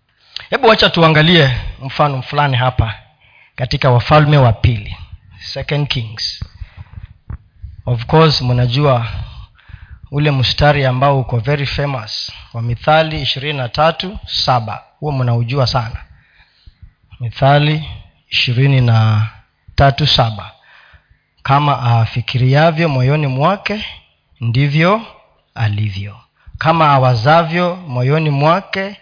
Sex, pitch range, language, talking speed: male, 110-165 Hz, Swahili, 80 wpm